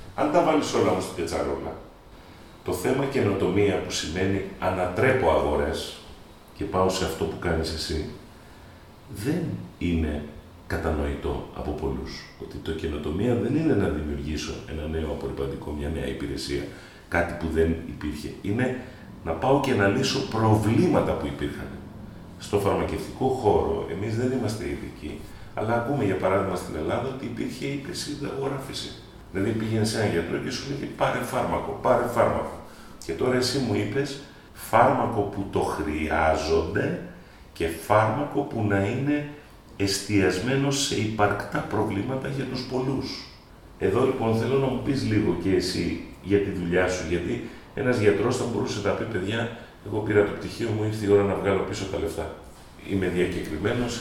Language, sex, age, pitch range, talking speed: Greek, male, 40-59, 80-115 Hz, 155 wpm